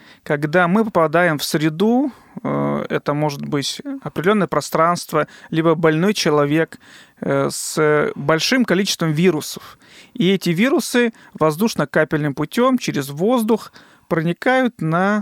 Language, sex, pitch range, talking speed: Russian, male, 155-205 Hz, 105 wpm